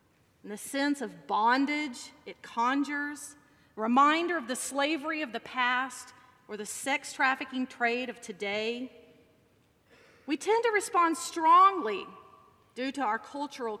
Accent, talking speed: American, 135 wpm